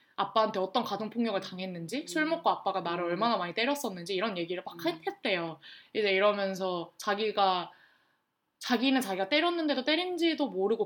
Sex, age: female, 20-39